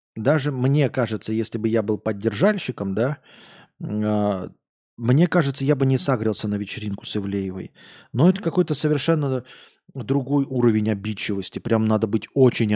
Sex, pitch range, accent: male, 105-145 Hz, native